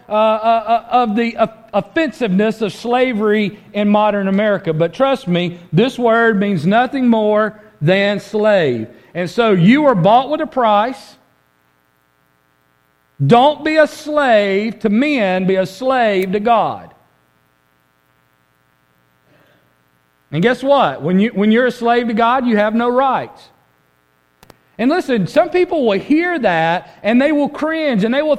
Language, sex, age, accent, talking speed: English, male, 40-59, American, 145 wpm